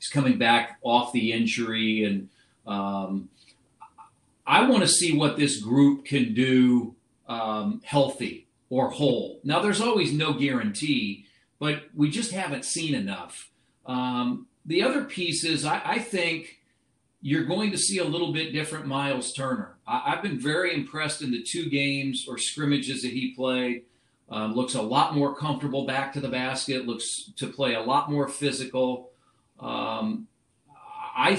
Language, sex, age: English, male, 40-59